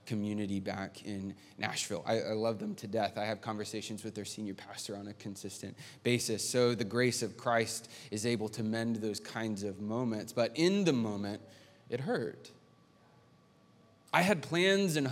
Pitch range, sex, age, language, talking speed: 110-150 Hz, male, 20-39, English, 175 wpm